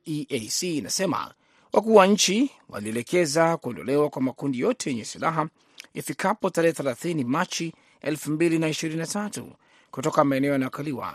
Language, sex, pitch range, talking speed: Swahili, male, 135-170 Hz, 90 wpm